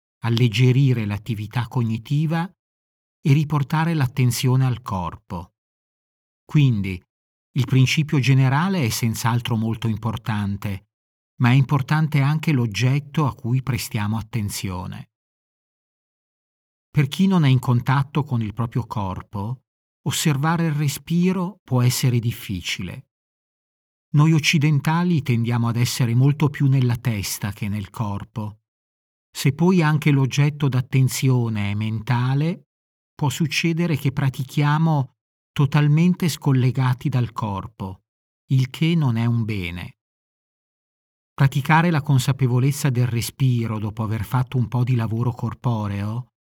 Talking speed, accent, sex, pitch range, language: 110 wpm, native, male, 110-150 Hz, Italian